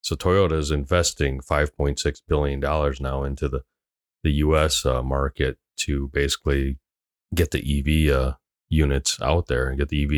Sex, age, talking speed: male, 30-49, 155 wpm